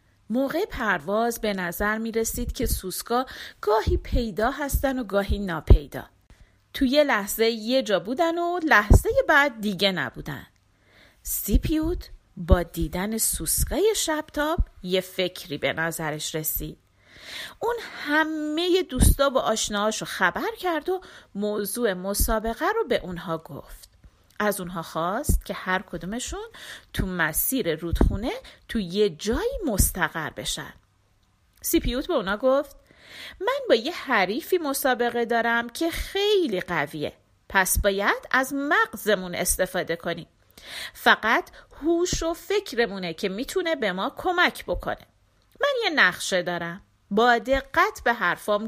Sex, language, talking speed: female, Persian, 120 wpm